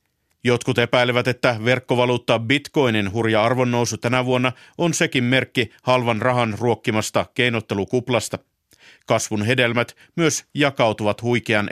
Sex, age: male, 50-69